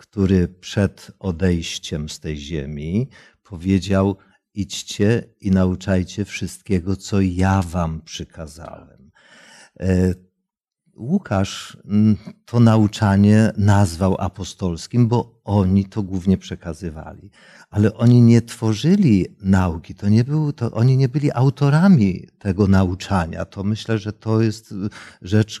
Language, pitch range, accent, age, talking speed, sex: Polish, 95-115 Hz, native, 50-69, 100 wpm, male